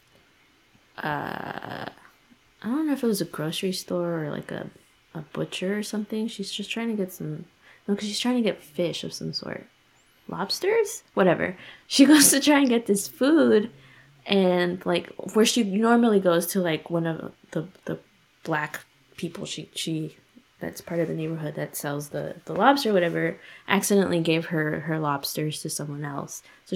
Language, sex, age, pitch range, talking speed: English, female, 20-39, 165-205 Hz, 180 wpm